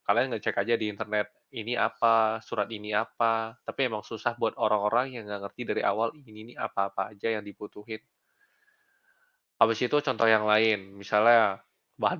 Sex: male